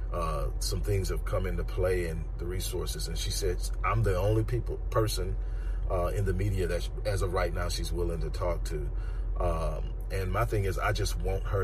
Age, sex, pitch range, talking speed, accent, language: 40-59, male, 85-95 Hz, 215 wpm, American, English